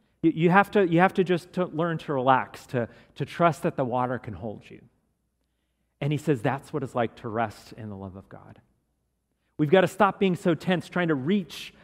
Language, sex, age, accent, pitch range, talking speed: English, male, 40-59, American, 105-155 Hz, 210 wpm